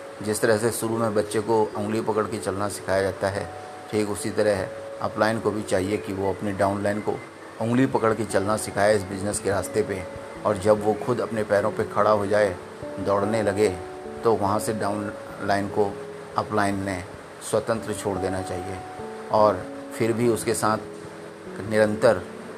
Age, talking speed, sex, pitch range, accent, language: 30-49, 175 wpm, male, 95-110 Hz, native, Hindi